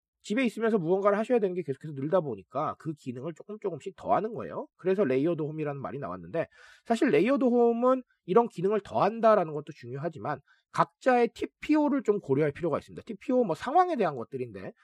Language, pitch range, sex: Korean, 155-235 Hz, male